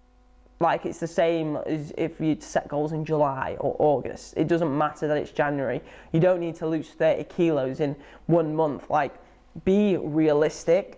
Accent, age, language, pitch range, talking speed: British, 10-29, English, 150-170 Hz, 175 wpm